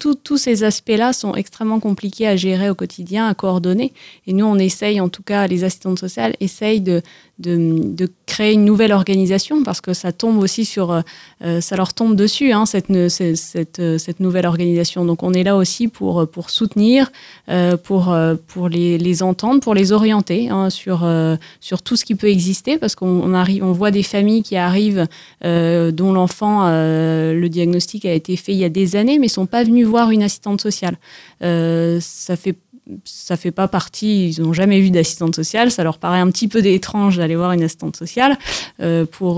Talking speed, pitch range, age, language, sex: 205 wpm, 175-210 Hz, 20-39, French, female